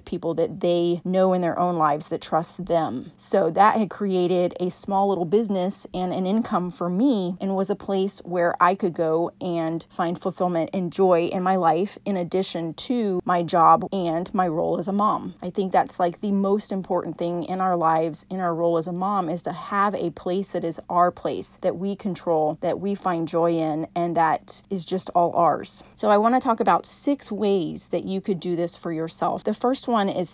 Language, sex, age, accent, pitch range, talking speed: English, female, 30-49, American, 170-195 Hz, 220 wpm